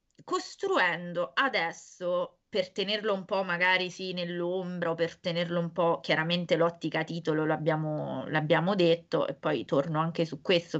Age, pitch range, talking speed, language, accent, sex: 20-39, 170-210 Hz, 140 wpm, Italian, native, female